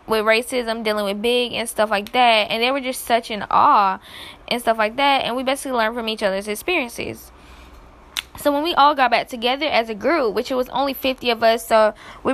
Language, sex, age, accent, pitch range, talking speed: English, female, 10-29, American, 210-260 Hz, 230 wpm